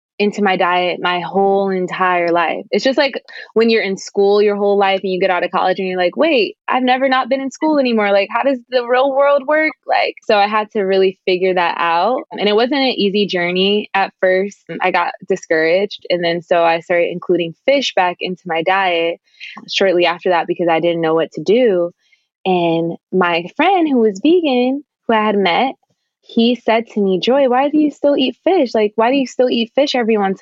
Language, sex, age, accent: English, female, 20-39, American